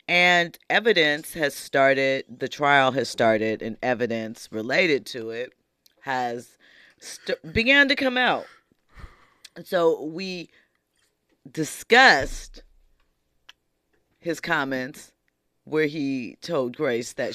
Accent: American